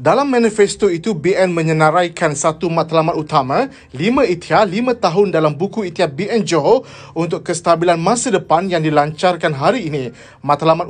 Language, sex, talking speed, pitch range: Malay, male, 145 wpm, 160-205 Hz